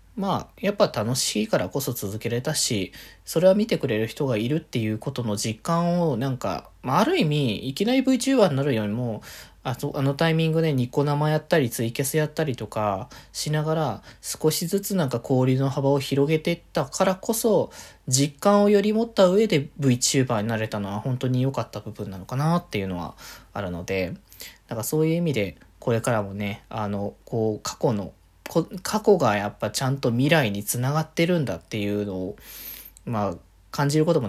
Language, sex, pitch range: Japanese, male, 110-160 Hz